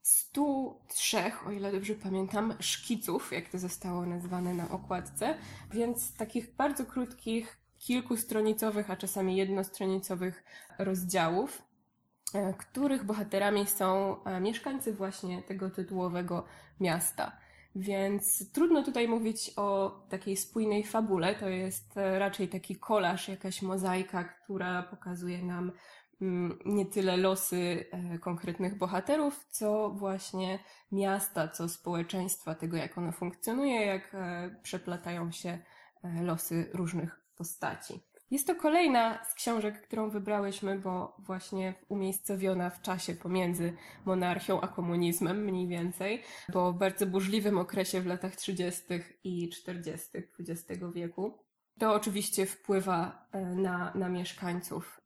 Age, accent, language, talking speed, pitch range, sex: 20-39, native, Polish, 110 wpm, 180-205 Hz, female